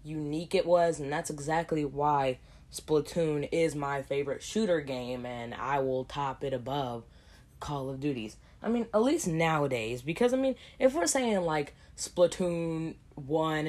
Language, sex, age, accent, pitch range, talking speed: English, female, 10-29, American, 130-170 Hz, 160 wpm